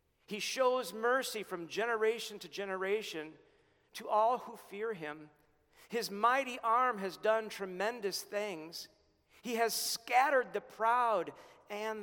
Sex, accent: male, American